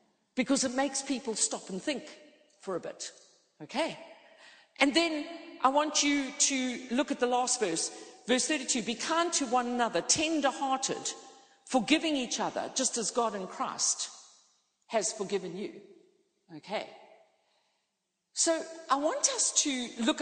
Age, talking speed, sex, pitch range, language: 50-69, 145 wpm, female, 200-280 Hz, English